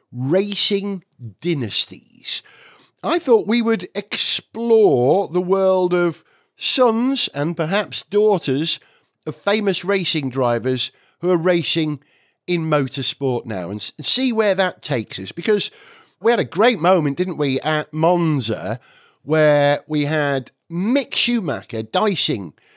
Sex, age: male, 50-69